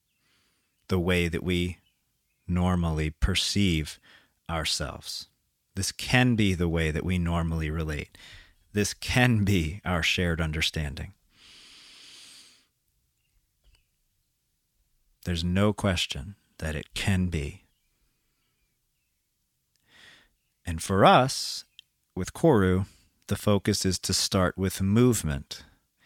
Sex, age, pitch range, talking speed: male, 40-59, 80-100 Hz, 95 wpm